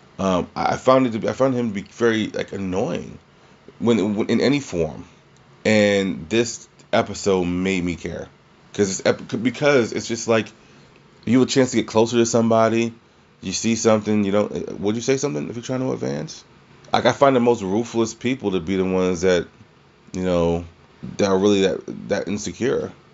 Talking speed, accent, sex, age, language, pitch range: 195 wpm, American, male, 30-49, English, 90-115 Hz